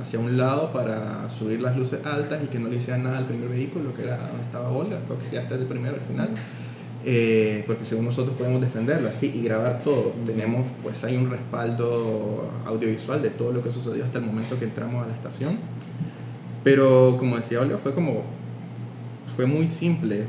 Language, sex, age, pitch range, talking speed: Spanish, male, 20-39, 115-130 Hz, 200 wpm